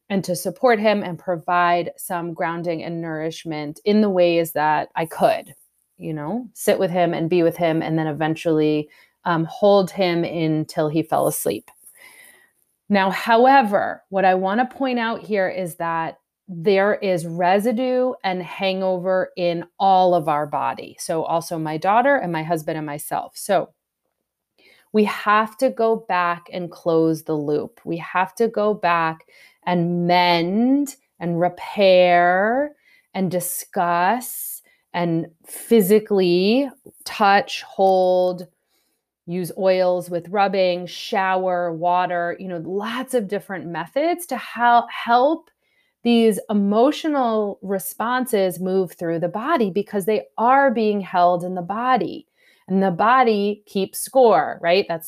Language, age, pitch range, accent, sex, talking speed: English, 30-49, 175-225 Hz, American, female, 135 wpm